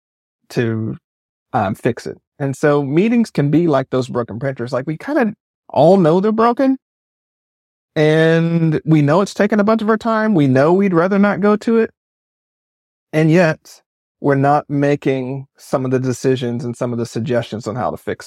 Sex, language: male, English